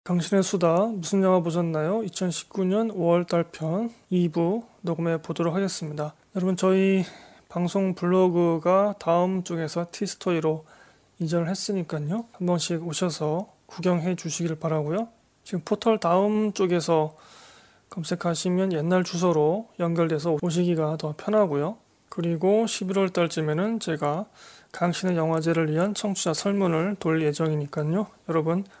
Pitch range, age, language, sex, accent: 160-195 Hz, 20-39, Korean, male, native